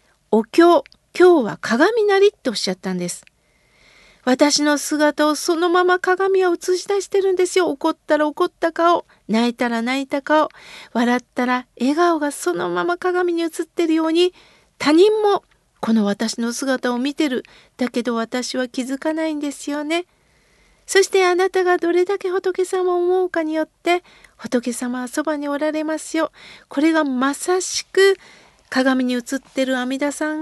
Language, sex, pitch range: Japanese, female, 270-365 Hz